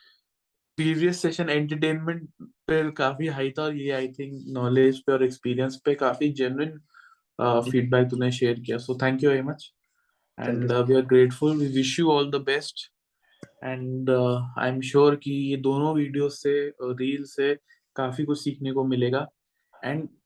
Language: Hindi